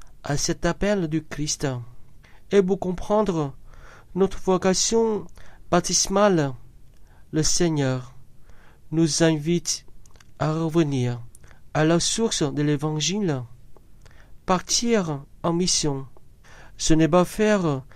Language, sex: French, male